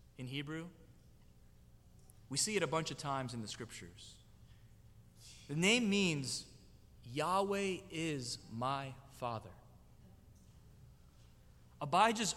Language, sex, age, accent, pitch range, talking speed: English, male, 20-39, American, 105-160 Hz, 95 wpm